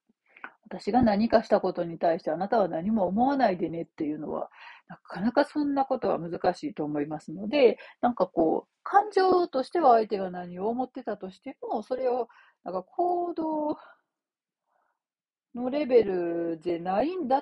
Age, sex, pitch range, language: 40-59, female, 180-260 Hz, Japanese